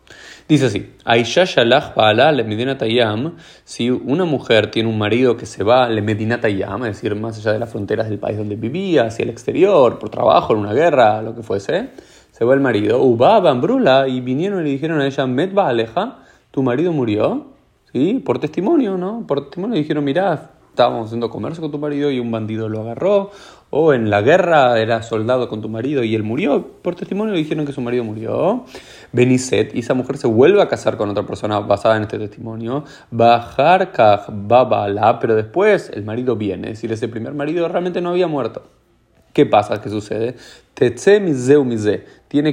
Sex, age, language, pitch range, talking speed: male, 30-49, Spanish, 110-150 Hz, 190 wpm